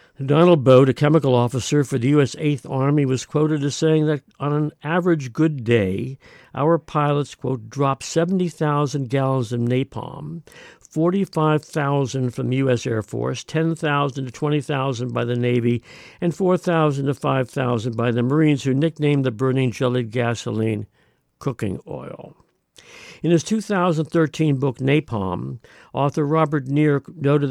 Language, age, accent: English, 60-79, American